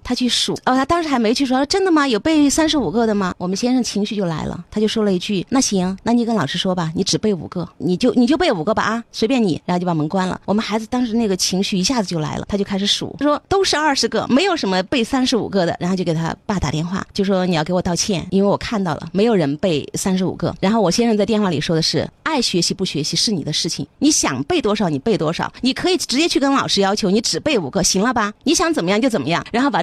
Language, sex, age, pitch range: Chinese, female, 30-49, 180-235 Hz